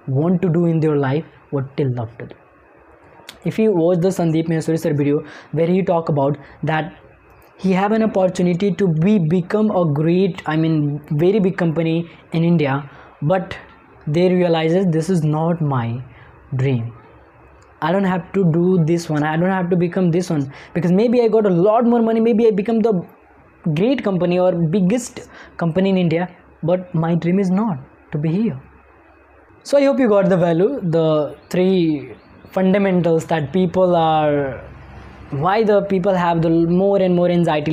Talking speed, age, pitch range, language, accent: 175 wpm, 20-39, 150-185 Hz, English, Indian